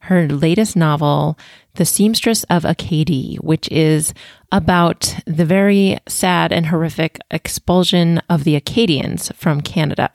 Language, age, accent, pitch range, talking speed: English, 30-49, American, 160-200 Hz, 125 wpm